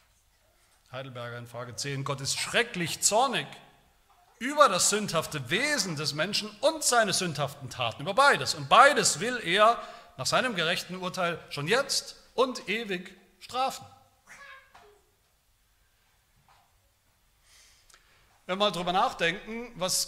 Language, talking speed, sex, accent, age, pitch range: German, 115 wpm, male, German, 40-59, 140-195 Hz